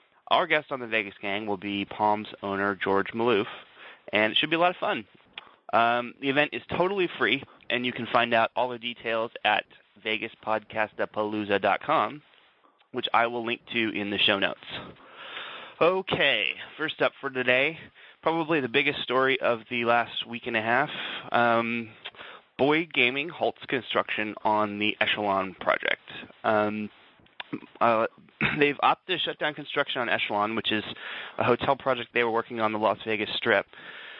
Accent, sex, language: American, male, English